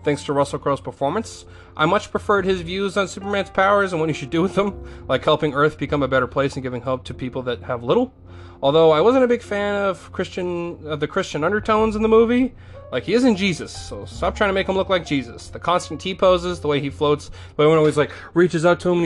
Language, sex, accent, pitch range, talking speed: English, male, American, 120-160 Hz, 250 wpm